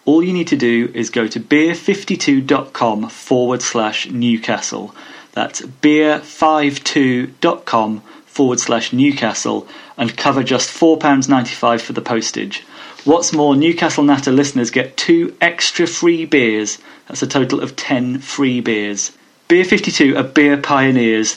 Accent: British